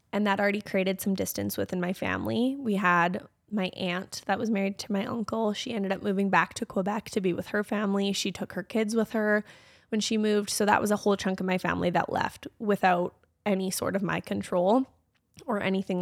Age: 20-39